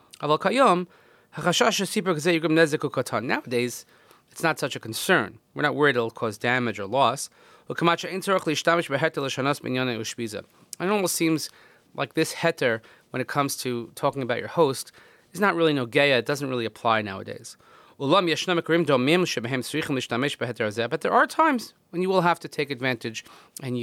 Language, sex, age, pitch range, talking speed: English, male, 30-49, 125-165 Hz, 130 wpm